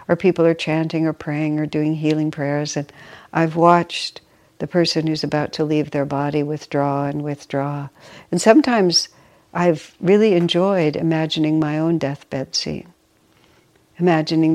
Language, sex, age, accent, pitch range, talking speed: English, female, 60-79, American, 150-170 Hz, 145 wpm